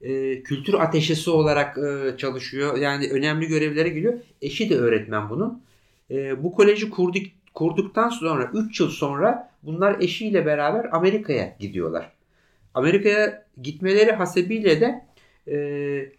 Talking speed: 120 wpm